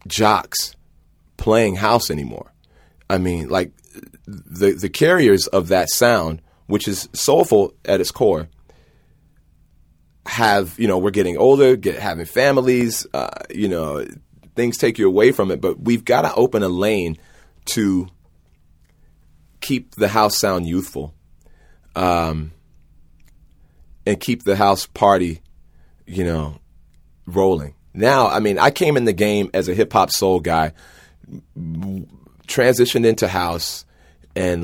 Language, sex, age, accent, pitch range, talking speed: English, male, 30-49, American, 80-100 Hz, 135 wpm